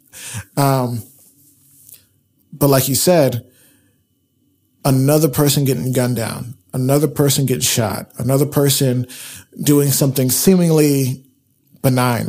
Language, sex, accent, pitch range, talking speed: English, male, American, 120-140 Hz, 100 wpm